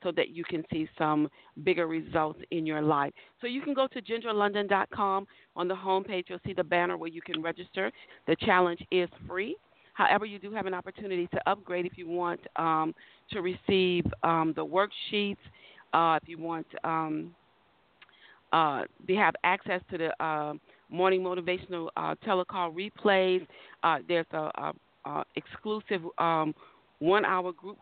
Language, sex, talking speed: English, female, 155 wpm